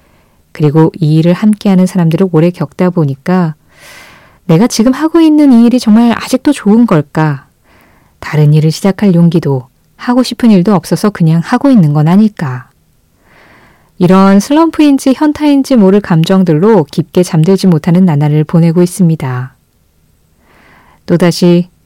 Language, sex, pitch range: Korean, female, 160-220 Hz